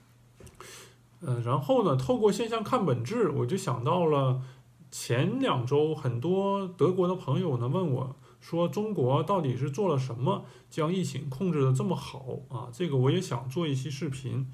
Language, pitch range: Chinese, 125-175 Hz